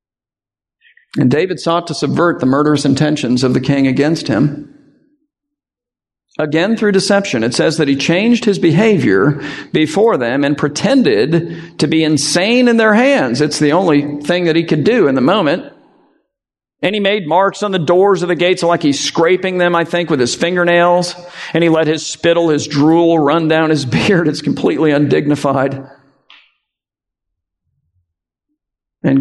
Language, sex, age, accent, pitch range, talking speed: English, male, 50-69, American, 145-205 Hz, 160 wpm